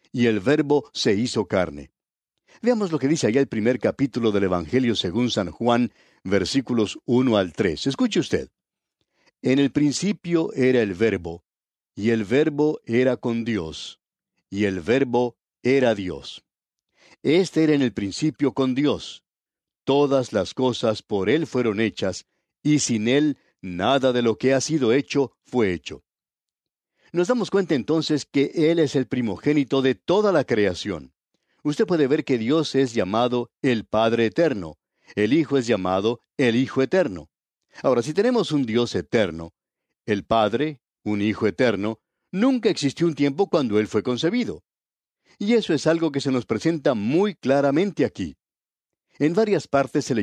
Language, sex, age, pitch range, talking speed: Spanish, male, 60-79, 110-150 Hz, 160 wpm